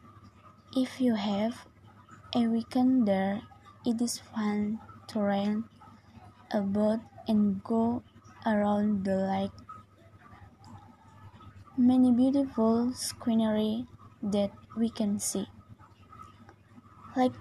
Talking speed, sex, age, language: 90 wpm, female, 20-39, Indonesian